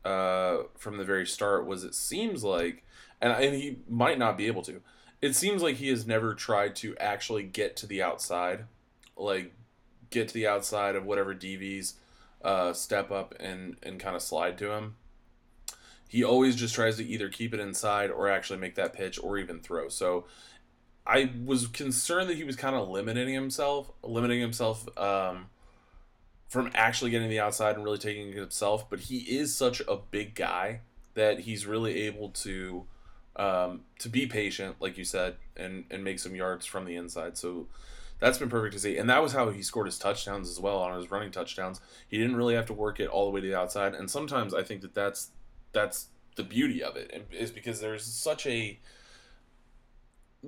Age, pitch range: 20-39, 95-120 Hz